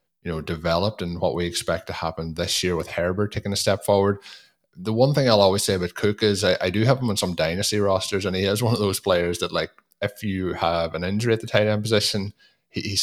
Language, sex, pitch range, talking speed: English, male, 85-100 Hz, 255 wpm